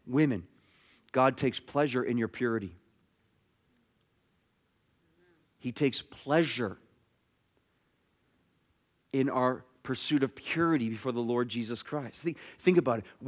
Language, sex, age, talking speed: English, male, 40-59, 105 wpm